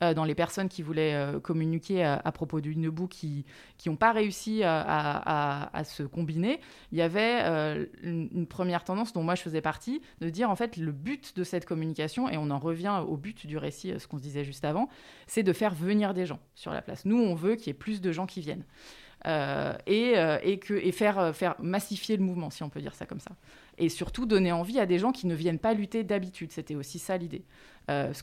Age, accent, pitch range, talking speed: 20-39, French, 155-200 Hz, 245 wpm